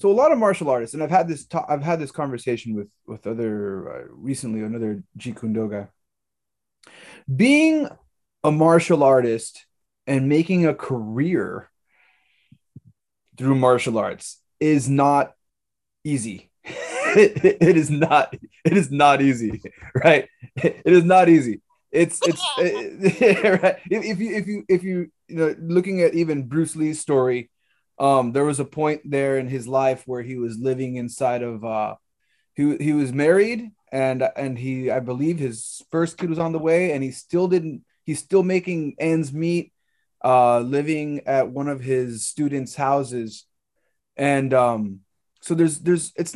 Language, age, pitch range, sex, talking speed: English, 20-39, 130-175 Hz, male, 160 wpm